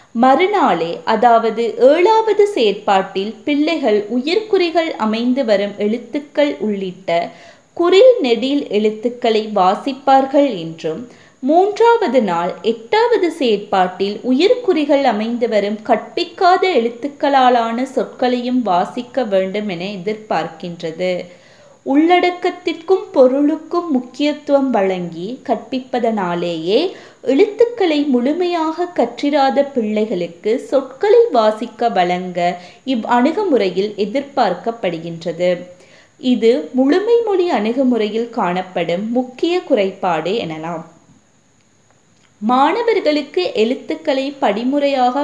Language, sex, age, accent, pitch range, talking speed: Tamil, female, 20-39, native, 205-290 Hz, 70 wpm